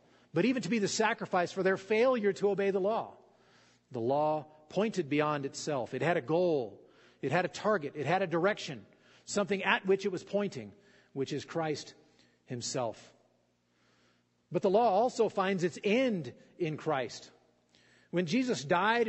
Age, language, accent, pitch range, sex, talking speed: 40-59, English, American, 145-210 Hz, male, 165 wpm